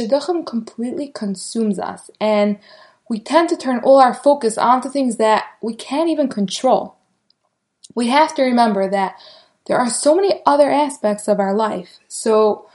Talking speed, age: 160 wpm, 20-39